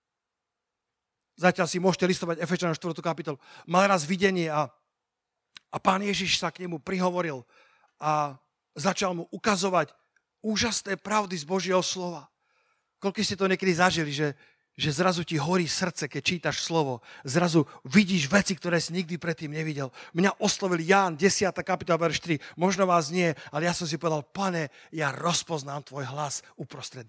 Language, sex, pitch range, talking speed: Slovak, male, 160-200 Hz, 155 wpm